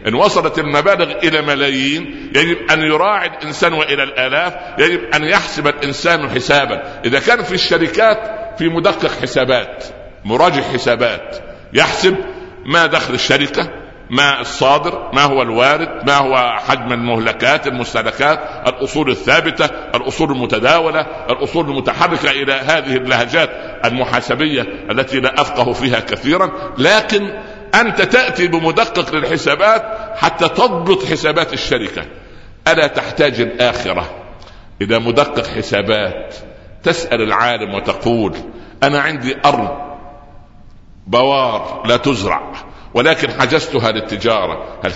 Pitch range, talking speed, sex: 130-170 Hz, 110 wpm, male